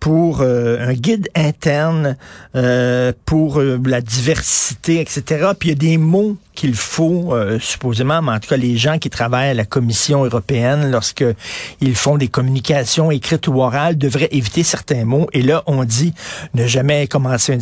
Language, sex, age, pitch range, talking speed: French, male, 50-69, 125-170 Hz, 175 wpm